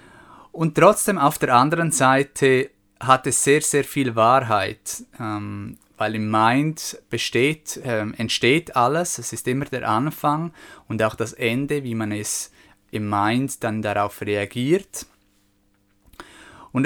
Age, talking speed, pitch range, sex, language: 20-39, 130 wpm, 110-140 Hz, male, German